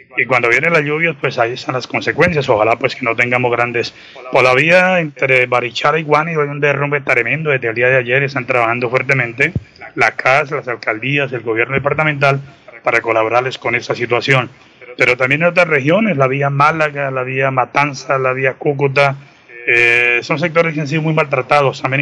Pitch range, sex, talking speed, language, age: 125-150 Hz, male, 195 wpm, Spanish, 30-49